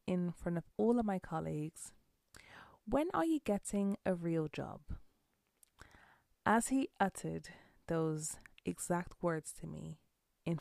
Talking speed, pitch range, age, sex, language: 130 wpm, 155-195 Hz, 20-39, female, English